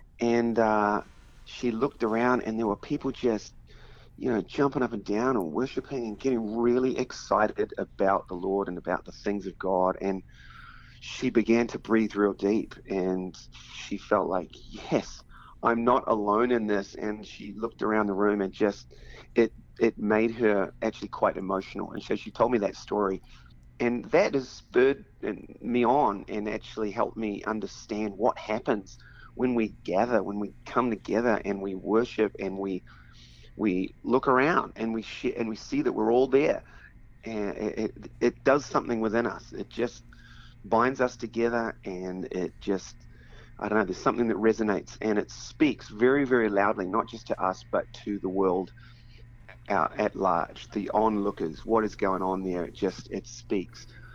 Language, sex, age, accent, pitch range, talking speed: English, male, 30-49, Australian, 100-120 Hz, 175 wpm